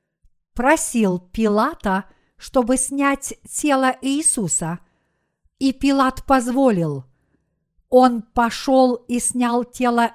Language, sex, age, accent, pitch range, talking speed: Russian, female, 50-69, native, 210-265 Hz, 85 wpm